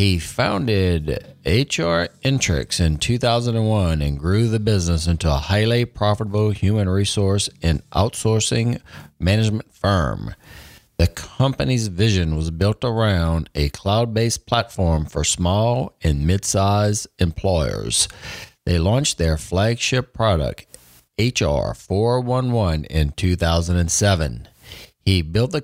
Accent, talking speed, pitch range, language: American, 105 wpm, 80-105 Hz, English